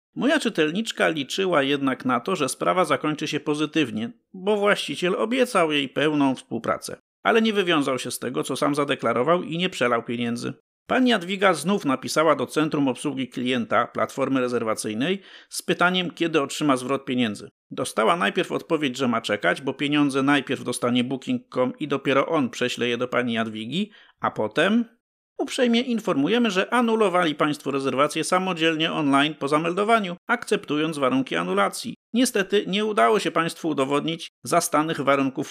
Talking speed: 150 wpm